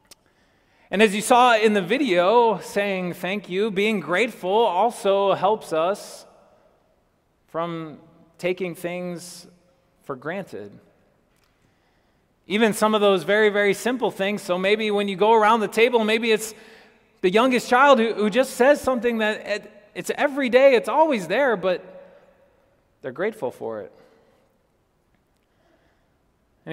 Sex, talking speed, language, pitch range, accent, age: male, 130 wpm, English, 165-215 Hz, American, 30-49